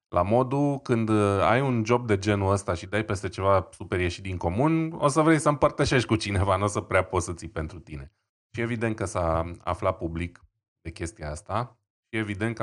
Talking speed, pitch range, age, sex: 215 wpm, 90-110 Hz, 20-39, male